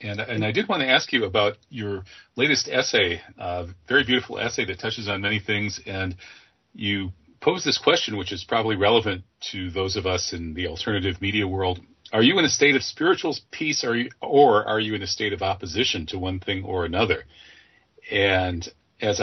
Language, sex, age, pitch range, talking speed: English, male, 40-59, 90-110 Hz, 195 wpm